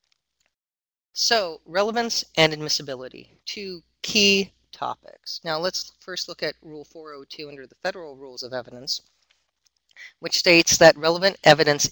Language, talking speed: English, 125 wpm